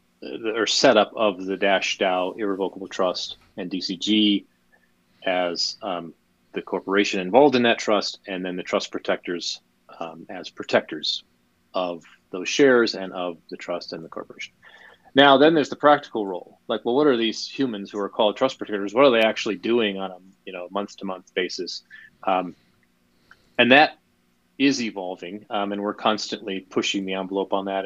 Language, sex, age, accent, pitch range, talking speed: English, male, 30-49, American, 95-110 Hz, 170 wpm